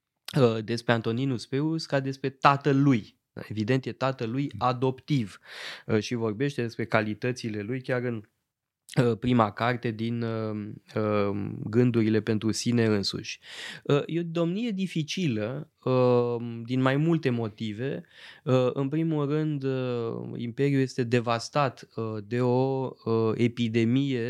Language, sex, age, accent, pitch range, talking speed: Romanian, male, 20-39, native, 110-130 Hz, 100 wpm